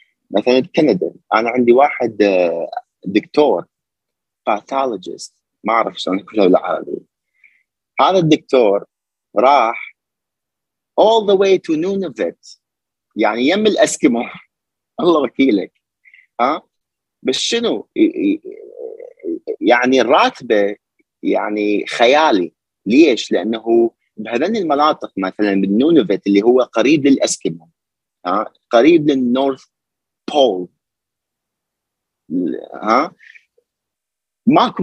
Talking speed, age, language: 80 wpm, 30-49, Arabic